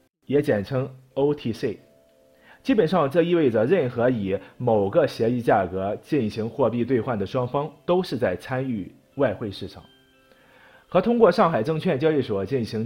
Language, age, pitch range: Chinese, 30-49, 100-155 Hz